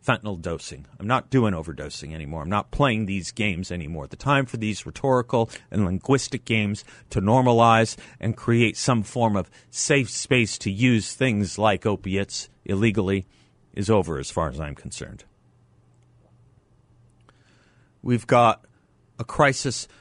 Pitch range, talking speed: 100-125 Hz, 140 wpm